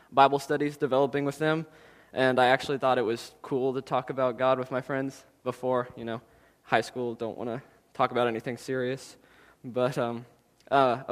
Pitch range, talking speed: 125-140 Hz, 185 wpm